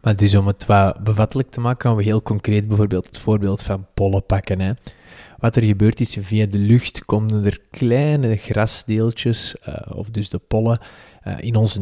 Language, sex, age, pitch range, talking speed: Dutch, male, 20-39, 100-120 Hz, 195 wpm